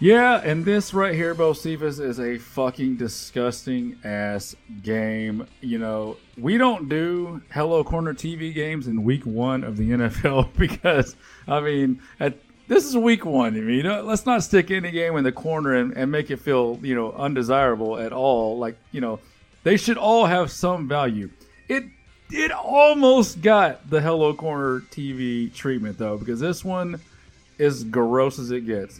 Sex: male